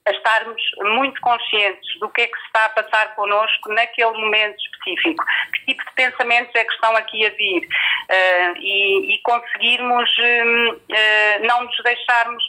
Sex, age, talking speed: female, 30-49, 170 wpm